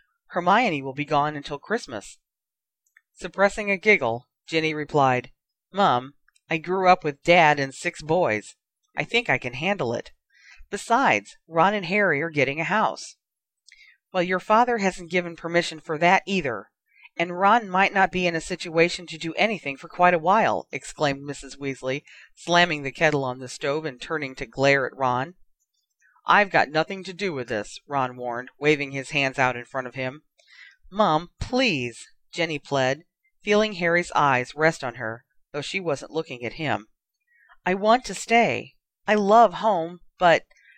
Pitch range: 140-195 Hz